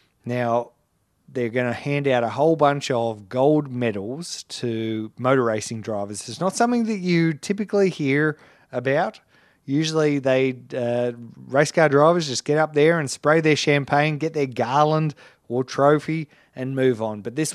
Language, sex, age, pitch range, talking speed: English, male, 30-49, 120-150 Hz, 165 wpm